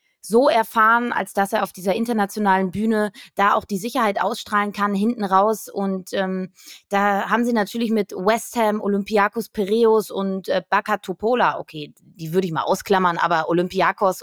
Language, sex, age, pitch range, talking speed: German, female, 20-39, 200-240 Hz, 165 wpm